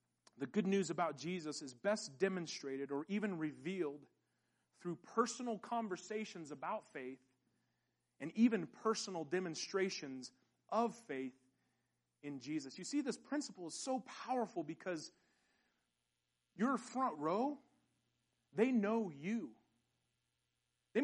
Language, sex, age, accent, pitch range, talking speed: English, male, 40-59, American, 155-240 Hz, 110 wpm